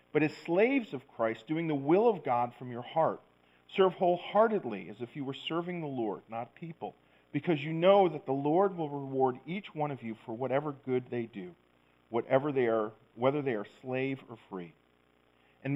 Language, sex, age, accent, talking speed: English, male, 40-59, American, 195 wpm